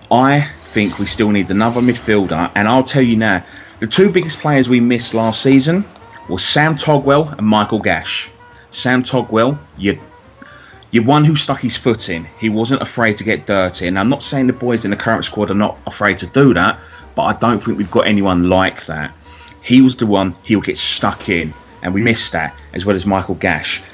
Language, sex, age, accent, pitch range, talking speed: English, male, 30-49, British, 95-125 Hz, 210 wpm